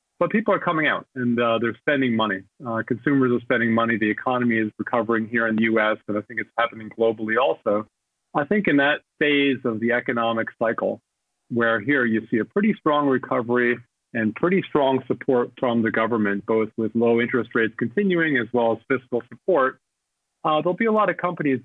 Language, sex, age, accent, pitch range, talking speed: English, male, 40-59, American, 115-140 Hz, 200 wpm